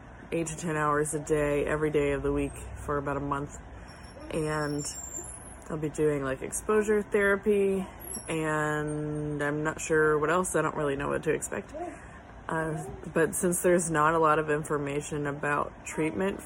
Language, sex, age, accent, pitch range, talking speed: English, female, 20-39, American, 150-175 Hz, 170 wpm